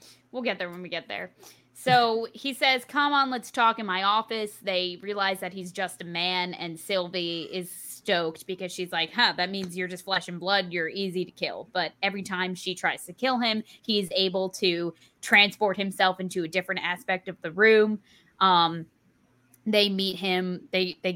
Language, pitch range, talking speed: English, 180-215 Hz, 195 wpm